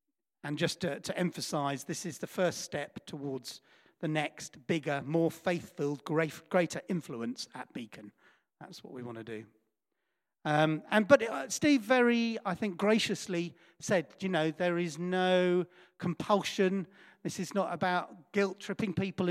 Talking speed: 150 wpm